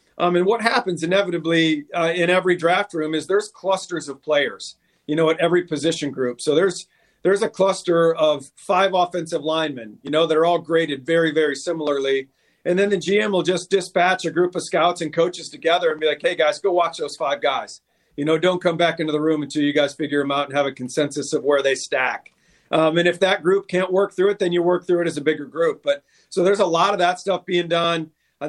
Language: English